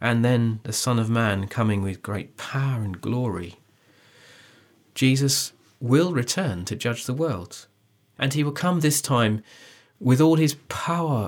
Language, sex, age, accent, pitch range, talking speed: English, male, 40-59, British, 100-130 Hz, 155 wpm